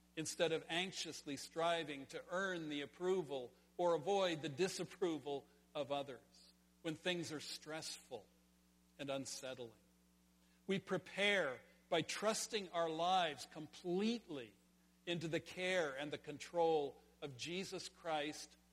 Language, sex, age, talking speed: English, male, 50-69, 115 wpm